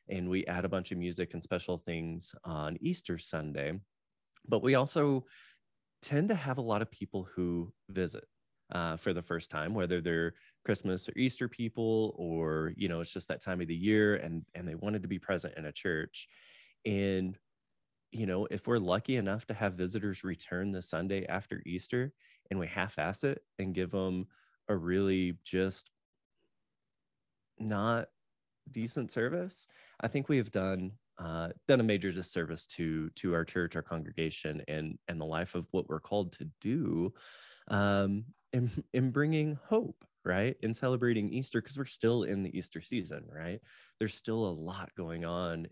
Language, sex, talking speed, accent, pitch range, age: English, male, 175 wpm, American, 85-110 Hz, 20-39